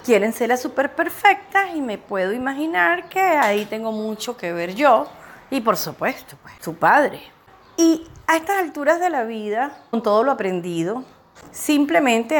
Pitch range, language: 220-290 Hz, Spanish